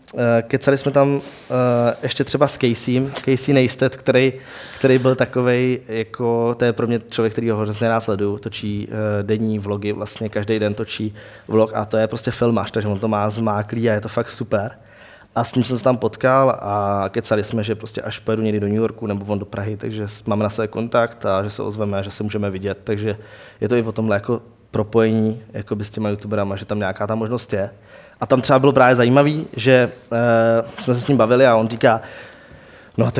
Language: Czech